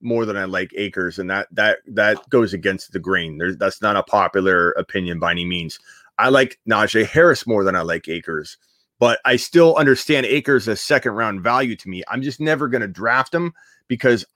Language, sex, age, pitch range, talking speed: English, male, 30-49, 110-135 Hz, 205 wpm